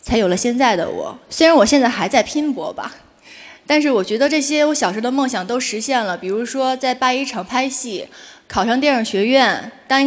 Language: Chinese